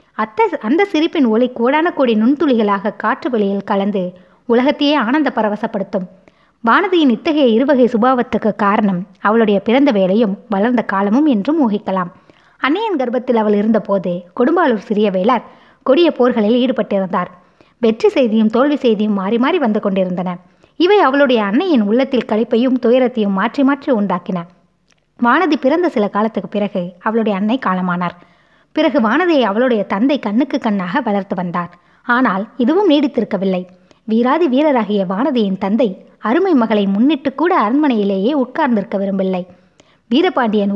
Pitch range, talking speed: 200-270 Hz, 120 wpm